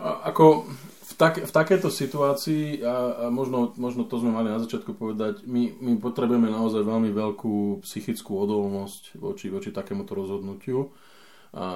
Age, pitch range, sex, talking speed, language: 20-39, 100-150 Hz, male, 145 wpm, Slovak